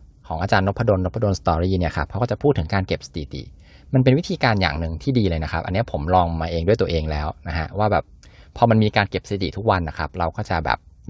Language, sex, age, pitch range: Thai, male, 20-39, 80-115 Hz